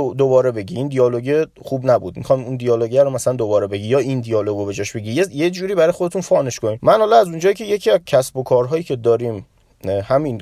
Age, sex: 30-49, male